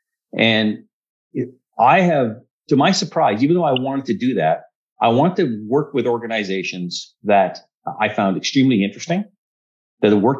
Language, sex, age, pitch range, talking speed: English, male, 50-69, 95-130 Hz, 155 wpm